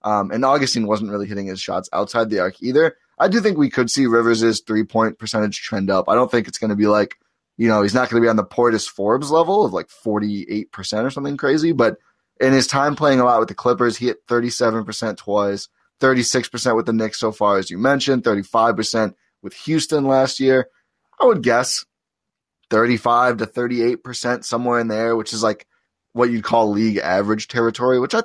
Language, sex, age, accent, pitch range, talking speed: English, male, 20-39, American, 105-125 Hz, 215 wpm